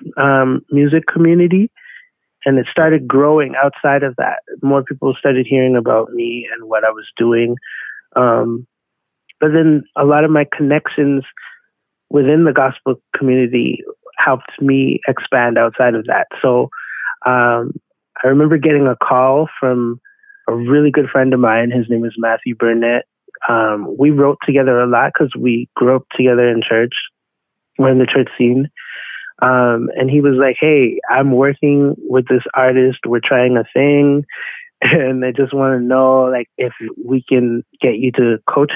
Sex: male